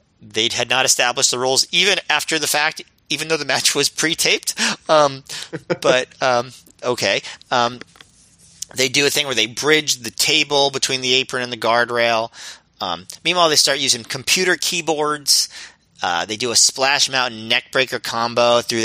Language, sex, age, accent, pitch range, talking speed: English, male, 40-59, American, 110-145 Hz, 170 wpm